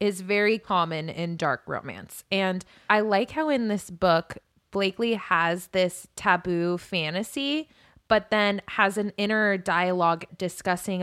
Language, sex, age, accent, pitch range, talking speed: English, female, 20-39, American, 170-205 Hz, 135 wpm